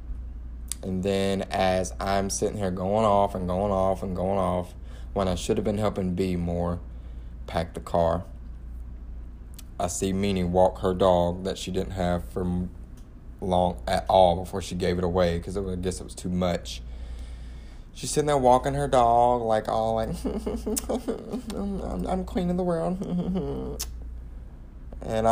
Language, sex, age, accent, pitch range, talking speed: English, male, 20-39, American, 75-100 Hz, 155 wpm